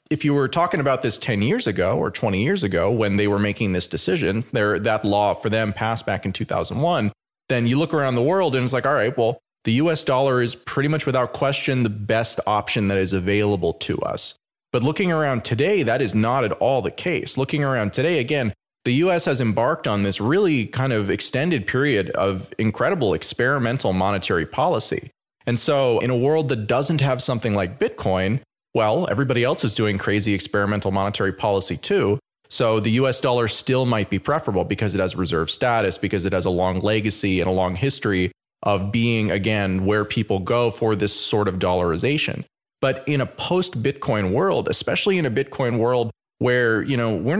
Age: 30-49